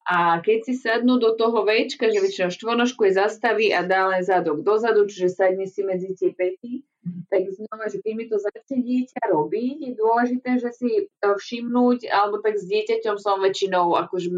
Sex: female